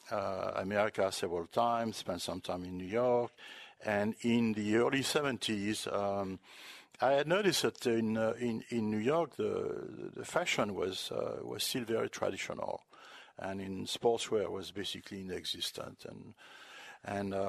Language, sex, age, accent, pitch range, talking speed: English, male, 60-79, French, 105-130 Hz, 150 wpm